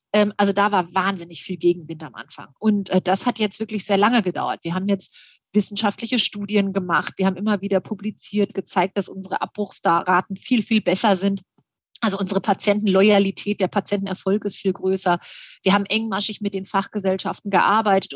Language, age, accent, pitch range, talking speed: German, 30-49, German, 190-215 Hz, 165 wpm